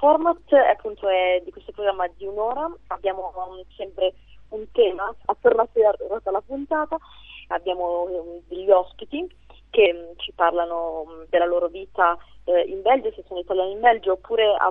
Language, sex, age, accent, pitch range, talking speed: Italian, female, 20-39, native, 180-235 Hz, 165 wpm